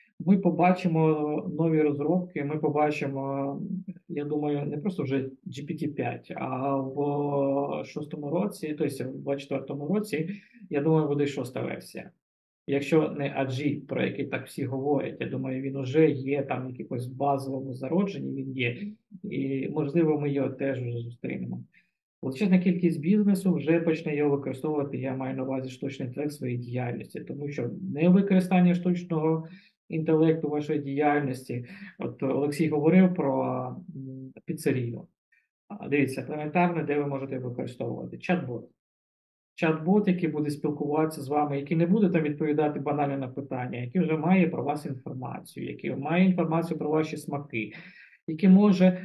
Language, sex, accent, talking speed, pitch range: Ukrainian, male, native, 140 wpm, 135-165 Hz